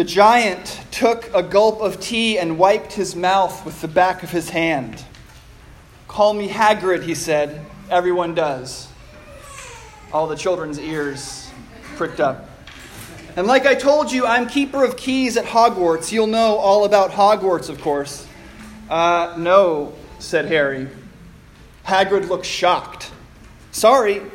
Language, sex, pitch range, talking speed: English, male, 170-230 Hz, 140 wpm